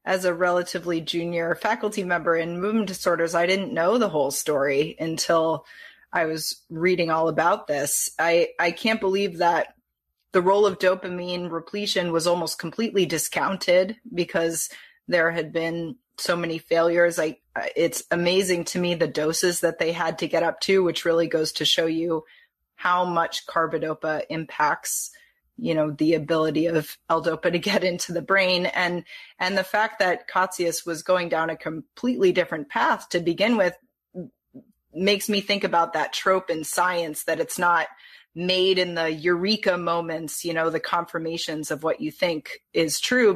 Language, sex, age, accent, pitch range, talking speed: English, female, 30-49, American, 160-185 Hz, 165 wpm